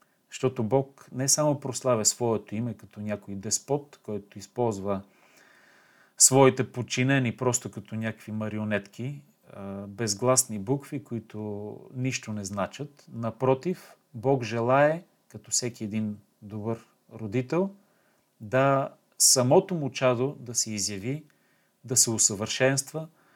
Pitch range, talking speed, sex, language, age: 110-140 Hz, 110 wpm, male, Bulgarian, 40-59